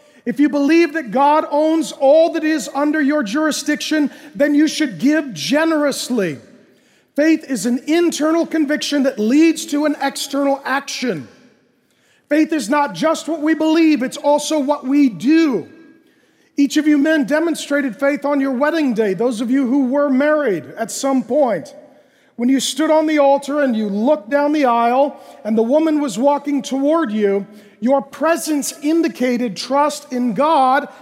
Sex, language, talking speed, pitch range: male, English, 165 wpm, 255-300 Hz